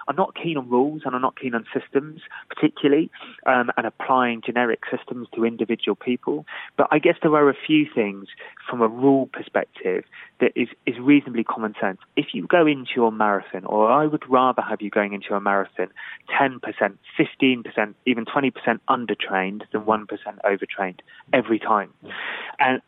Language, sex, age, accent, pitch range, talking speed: English, male, 30-49, British, 110-145 Hz, 170 wpm